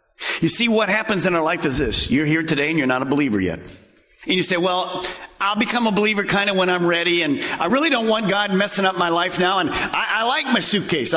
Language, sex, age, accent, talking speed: English, male, 50-69, American, 260 wpm